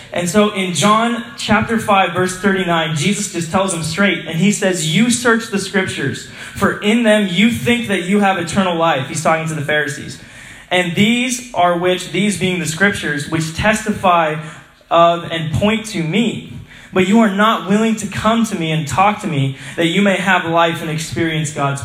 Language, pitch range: English, 160-210 Hz